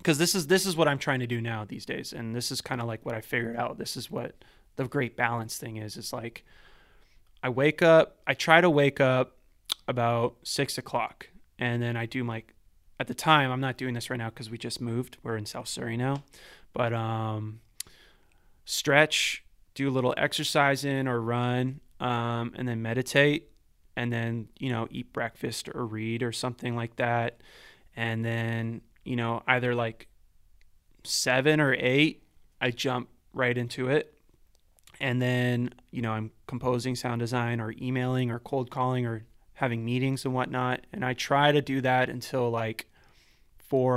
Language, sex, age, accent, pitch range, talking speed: English, male, 20-39, American, 115-135 Hz, 185 wpm